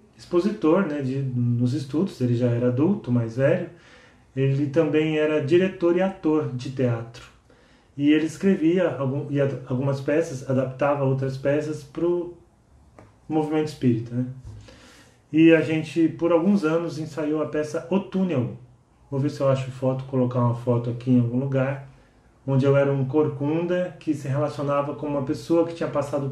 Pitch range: 130-155 Hz